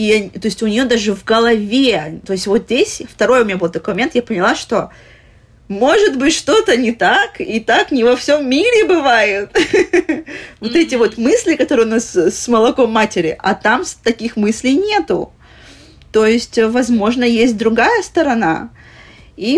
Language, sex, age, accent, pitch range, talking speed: Russian, female, 20-39, native, 195-245 Hz, 165 wpm